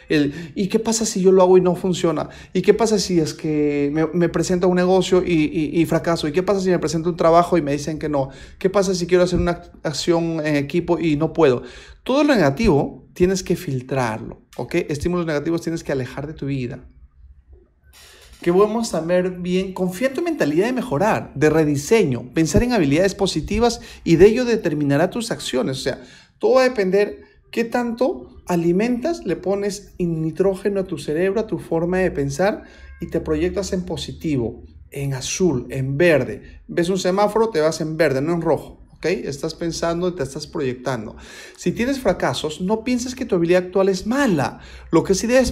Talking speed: 195 wpm